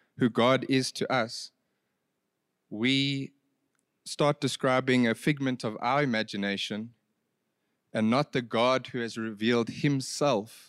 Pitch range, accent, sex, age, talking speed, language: 115-145 Hz, South African, male, 30-49, 120 wpm, English